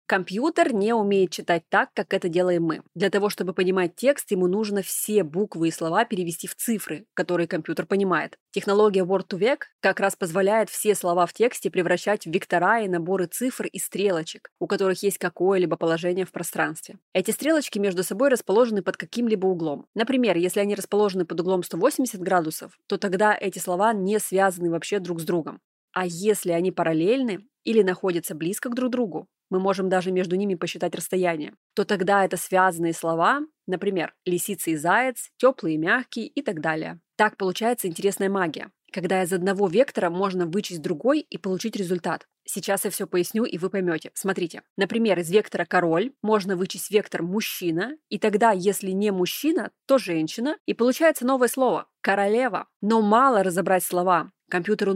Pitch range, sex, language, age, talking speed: 180-215 Hz, female, Russian, 20-39, 170 wpm